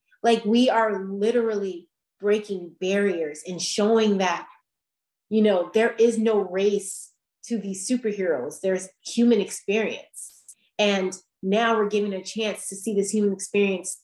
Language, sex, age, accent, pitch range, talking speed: English, female, 30-49, American, 185-215 Hz, 135 wpm